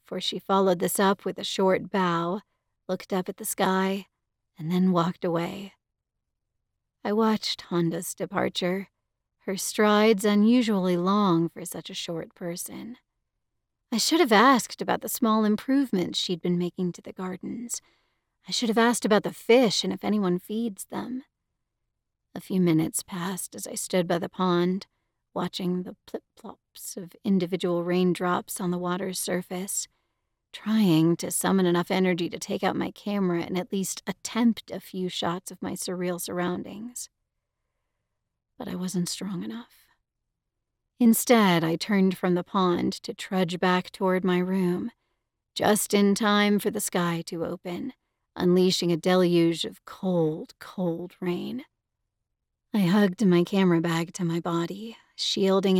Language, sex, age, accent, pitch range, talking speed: English, female, 40-59, American, 180-210 Hz, 150 wpm